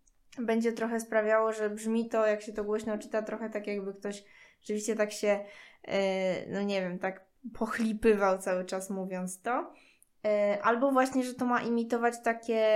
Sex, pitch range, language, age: female, 205-230 Hz, Polish, 20-39